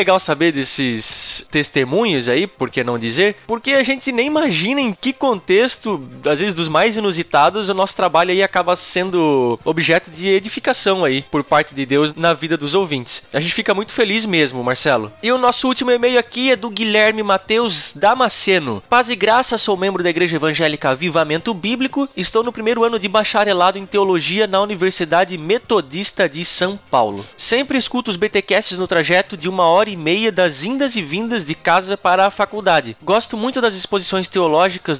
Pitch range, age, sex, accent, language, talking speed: 160-220 Hz, 20-39, male, Brazilian, Portuguese, 185 wpm